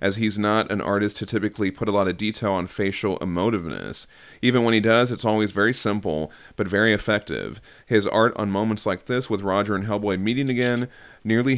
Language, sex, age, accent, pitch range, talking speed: English, male, 30-49, American, 95-110 Hz, 200 wpm